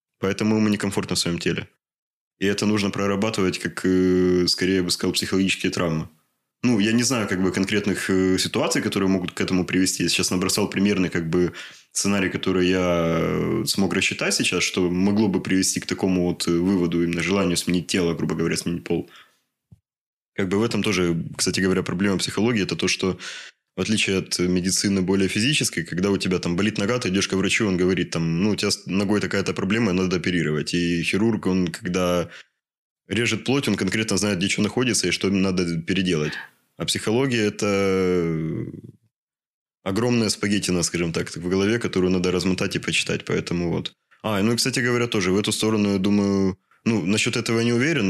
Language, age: Russian, 20-39